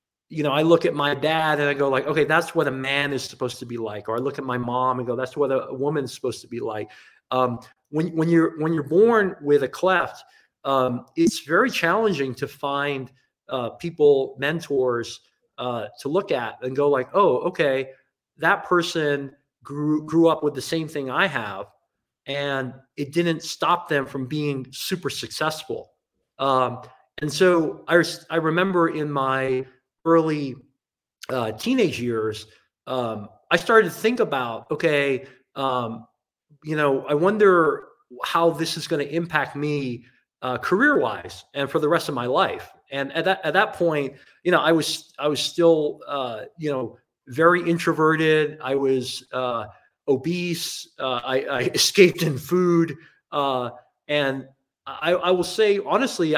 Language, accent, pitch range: English, American, 130-165 Hz